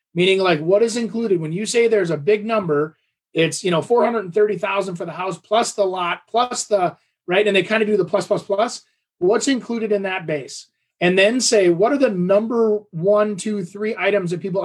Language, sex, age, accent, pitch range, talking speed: English, male, 30-49, American, 175-225 Hz, 215 wpm